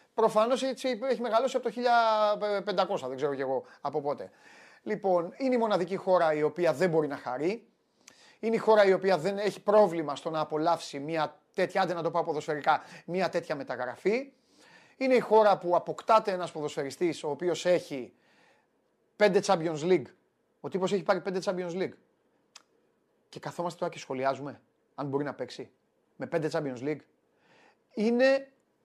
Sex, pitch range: male, 155-200 Hz